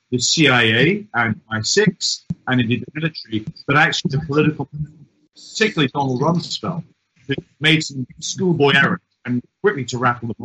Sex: male